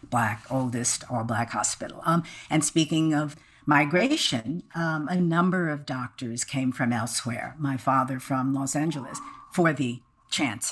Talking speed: 140 wpm